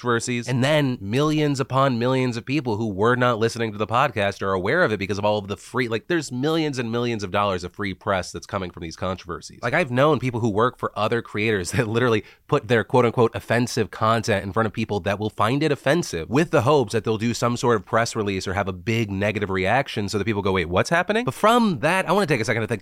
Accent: American